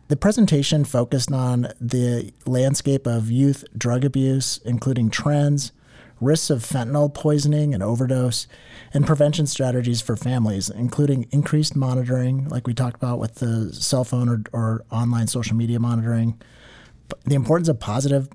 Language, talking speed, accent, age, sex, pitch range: English, 145 wpm, American, 40-59, male, 115-140 Hz